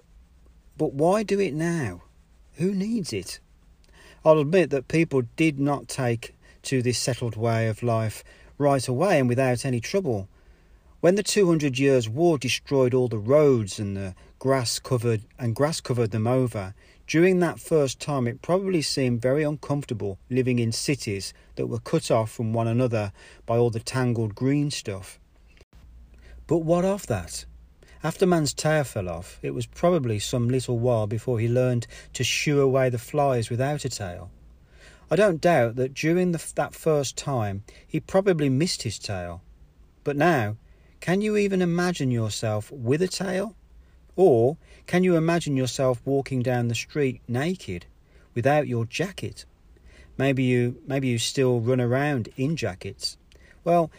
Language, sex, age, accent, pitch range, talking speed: English, male, 40-59, British, 105-155 Hz, 155 wpm